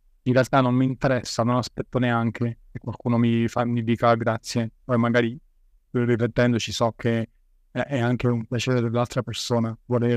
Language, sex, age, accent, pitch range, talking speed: Italian, male, 30-49, native, 115-135 Hz, 165 wpm